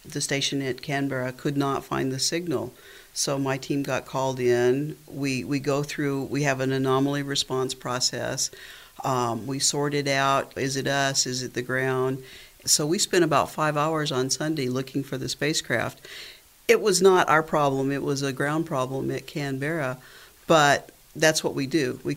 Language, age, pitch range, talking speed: English, 50-69, 135-170 Hz, 180 wpm